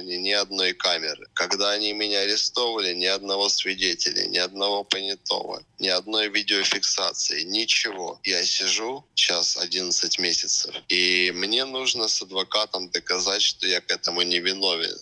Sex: male